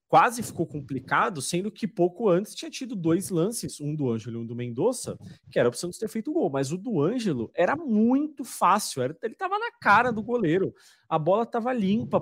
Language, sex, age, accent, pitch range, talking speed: Portuguese, male, 30-49, Brazilian, 125-210 Hz, 210 wpm